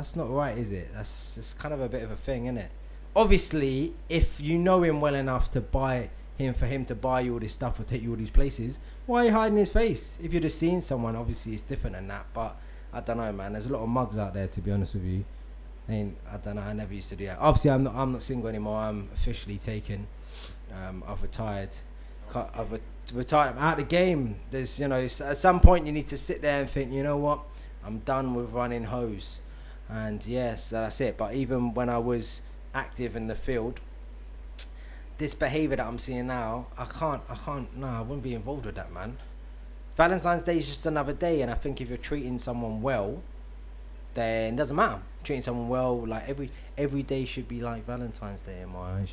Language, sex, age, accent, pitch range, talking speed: English, male, 20-39, British, 105-140 Hz, 230 wpm